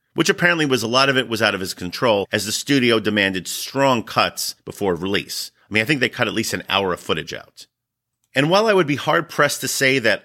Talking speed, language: 245 wpm, English